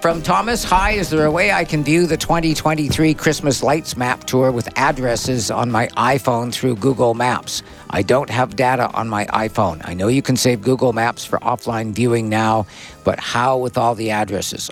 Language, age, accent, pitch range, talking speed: English, 50-69, American, 105-130 Hz, 195 wpm